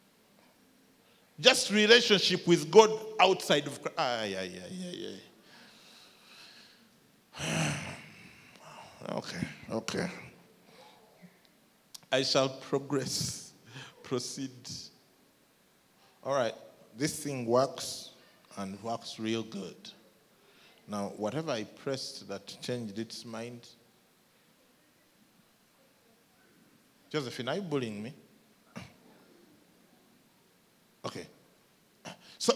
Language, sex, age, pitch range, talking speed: English, male, 40-59, 120-200 Hz, 75 wpm